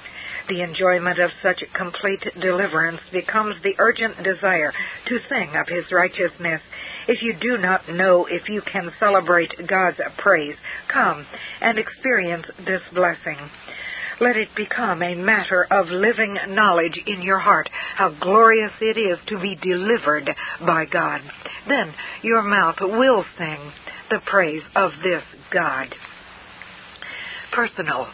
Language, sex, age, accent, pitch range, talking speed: English, female, 60-79, American, 170-205 Hz, 130 wpm